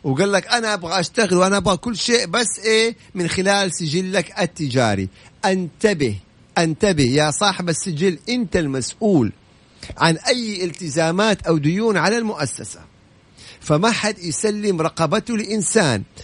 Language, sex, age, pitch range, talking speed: Arabic, male, 50-69, 160-210 Hz, 125 wpm